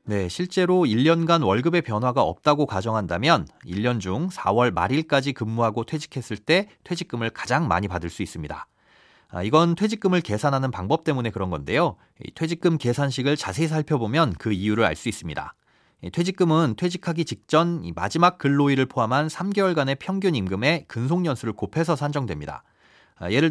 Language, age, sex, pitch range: Korean, 40-59, male, 115-175 Hz